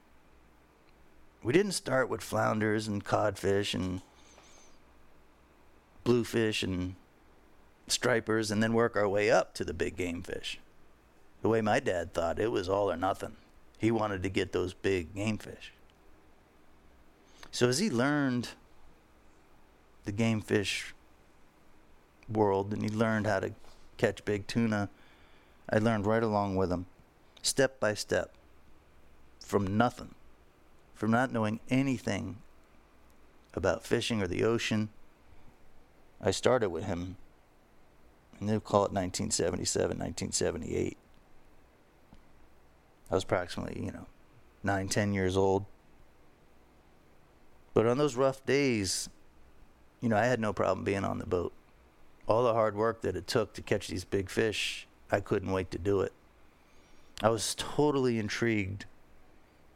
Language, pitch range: English, 80-110 Hz